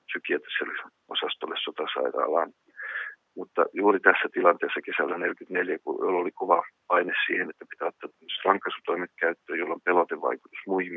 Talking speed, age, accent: 120 wpm, 40-59, native